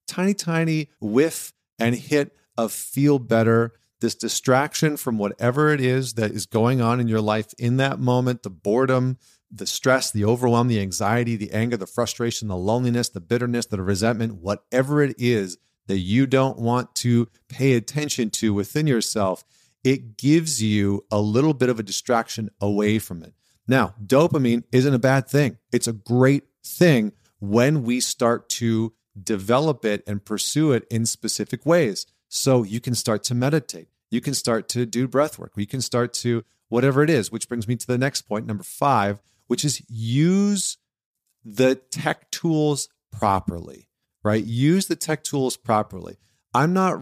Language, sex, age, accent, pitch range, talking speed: English, male, 40-59, American, 105-135 Hz, 170 wpm